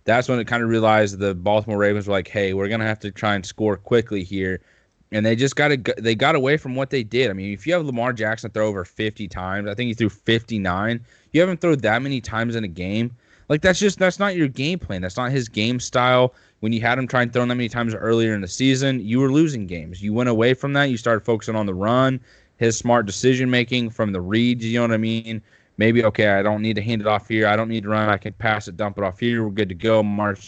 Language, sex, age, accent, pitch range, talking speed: English, male, 20-39, American, 100-120 Hz, 270 wpm